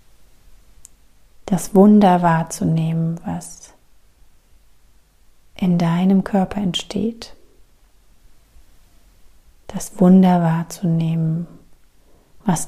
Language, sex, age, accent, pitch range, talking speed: German, female, 30-49, German, 165-200 Hz, 55 wpm